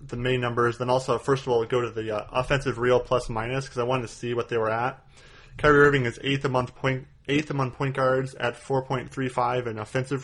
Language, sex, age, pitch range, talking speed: English, male, 20-39, 115-130 Hz, 215 wpm